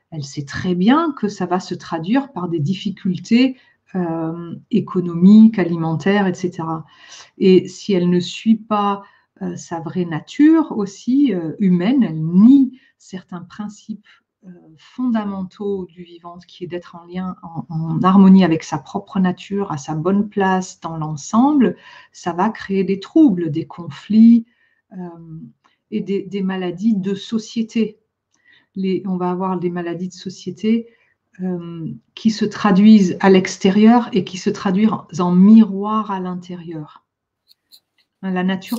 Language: French